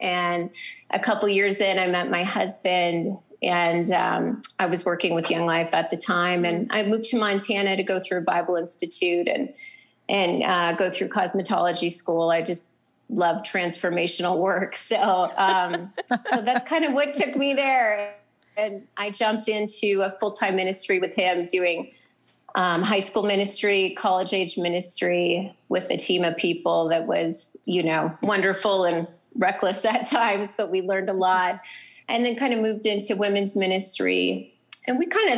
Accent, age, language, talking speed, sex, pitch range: American, 30-49, English, 175 wpm, female, 175-205 Hz